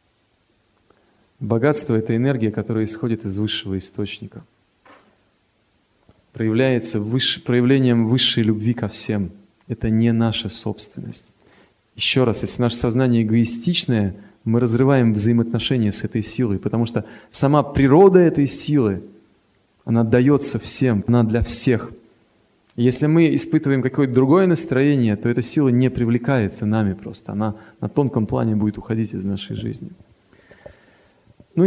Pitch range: 105-125 Hz